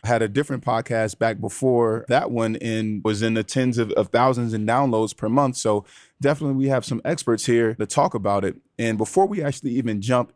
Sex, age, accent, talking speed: male, 20-39, American, 215 wpm